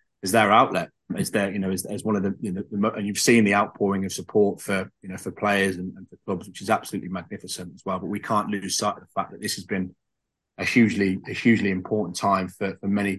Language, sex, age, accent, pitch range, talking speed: English, male, 20-39, British, 95-110 Hz, 270 wpm